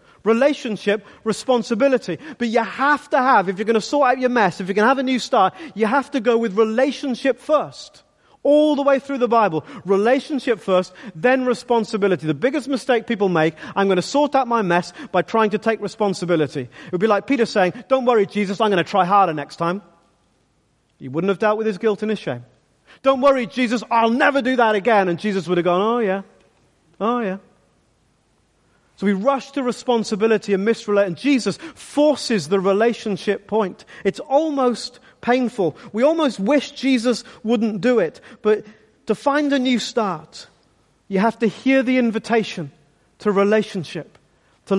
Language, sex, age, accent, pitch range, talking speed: English, male, 40-59, British, 195-250 Hz, 185 wpm